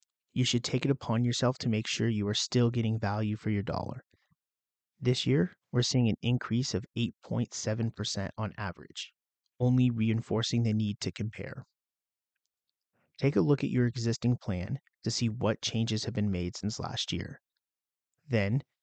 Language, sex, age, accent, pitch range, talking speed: English, male, 30-49, American, 105-125 Hz, 165 wpm